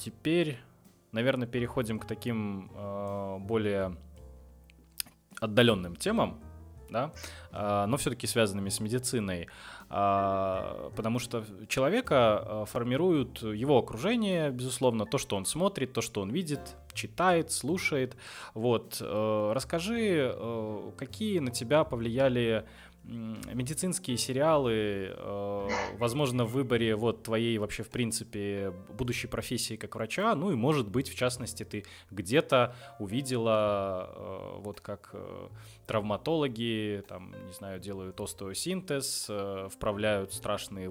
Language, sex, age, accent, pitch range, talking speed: Russian, male, 20-39, native, 100-125 Hz, 105 wpm